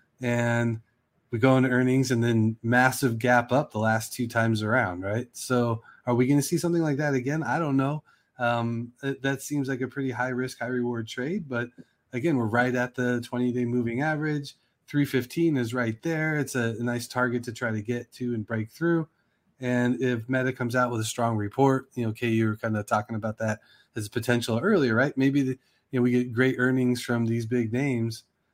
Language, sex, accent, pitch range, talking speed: English, male, American, 115-130 Hz, 215 wpm